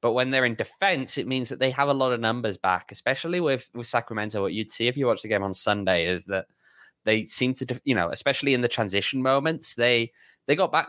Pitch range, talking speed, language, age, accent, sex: 100-130 Hz, 250 wpm, English, 10-29, British, male